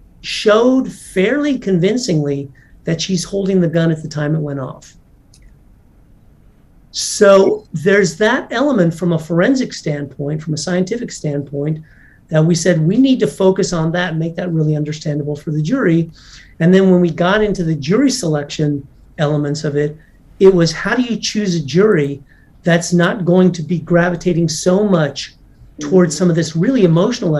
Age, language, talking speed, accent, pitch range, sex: 40-59, English, 170 wpm, American, 150-185 Hz, male